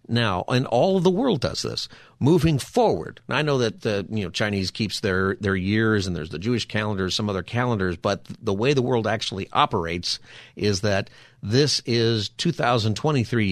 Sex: male